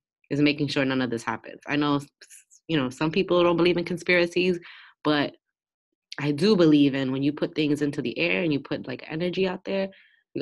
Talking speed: 215 wpm